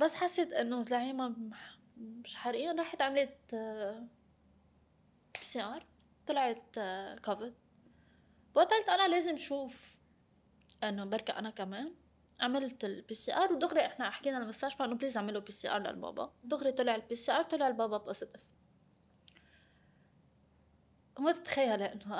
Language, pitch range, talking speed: English, 225-280 Hz, 125 wpm